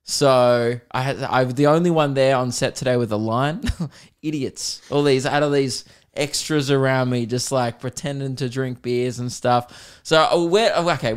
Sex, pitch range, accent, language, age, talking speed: male, 115-145 Hz, Australian, English, 20-39, 175 wpm